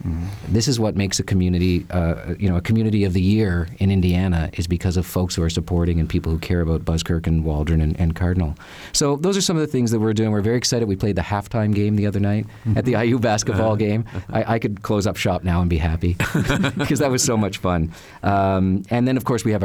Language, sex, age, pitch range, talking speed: English, male, 40-59, 85-100 Hz, 255 wpm